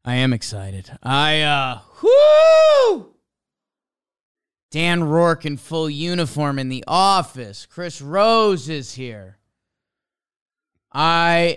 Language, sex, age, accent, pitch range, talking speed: English, male, 20-39, American, 125-165 Hz, 100 wpm